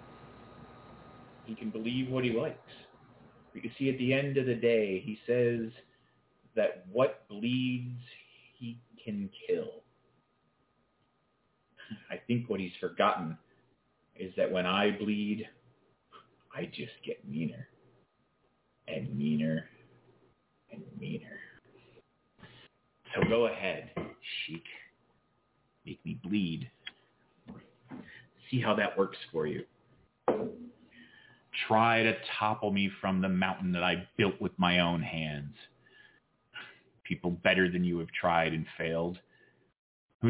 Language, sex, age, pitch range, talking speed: English, male, 30-49, 90-120 Hz, 115 wpm